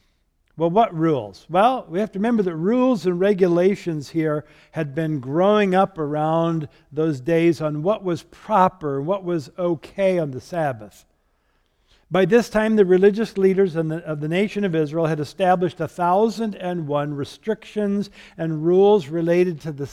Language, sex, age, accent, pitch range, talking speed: English, male, 60-79, American, 150-195 Hz, 155 wpm